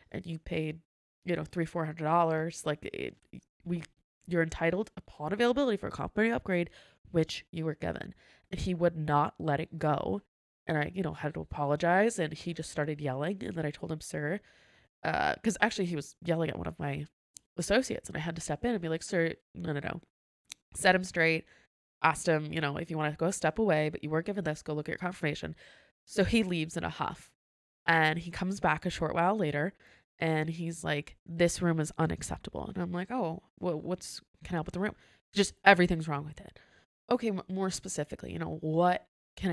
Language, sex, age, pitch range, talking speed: English, female, 20-39, 155-185 Hz, 215 wpm